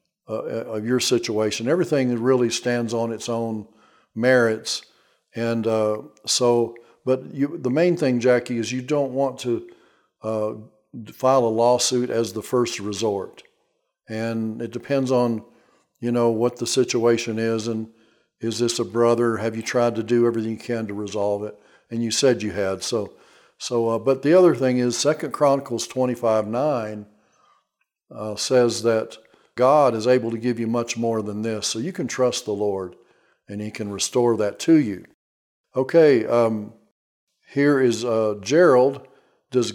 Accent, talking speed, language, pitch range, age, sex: American, 160 wpm, English, 115-130 Hz, 50-69, male